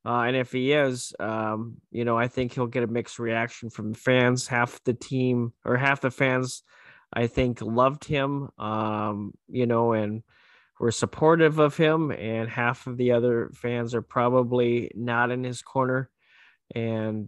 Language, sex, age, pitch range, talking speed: English, male, 20-39, 115-135 Hz, 175 wpm